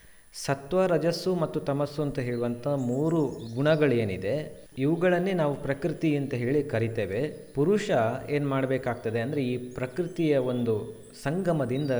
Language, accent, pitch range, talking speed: Kannada, native, 120-150 Hz, 110 wpm